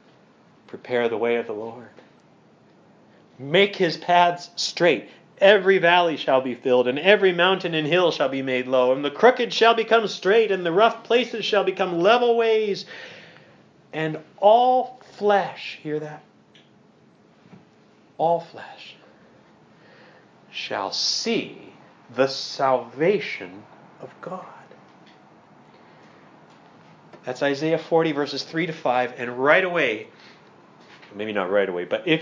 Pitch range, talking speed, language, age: 145-215 Hz, 125 wpm, English, 40-59